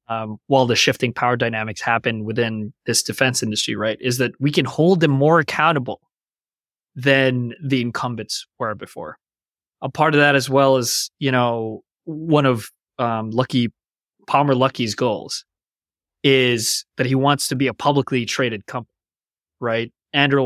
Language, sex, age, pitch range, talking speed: English, male, 20-39, 115-140 Hz, 155 wpm